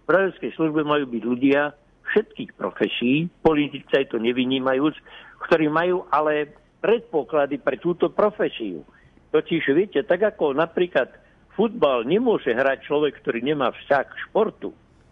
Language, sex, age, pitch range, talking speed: Slovak, male, 60-79, 140-170 Hz, 125 wpm